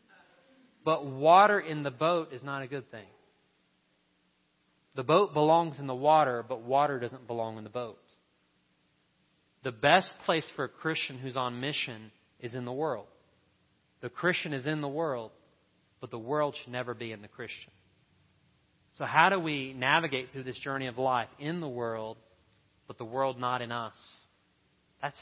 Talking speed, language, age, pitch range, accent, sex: 170 wpm, English, 30-49, 115-155 Hz, American, male